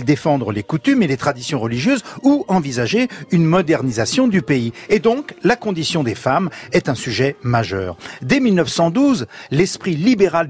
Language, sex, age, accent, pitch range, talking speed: French, male, 50-69, French, 130-200 Hz, 155 wpm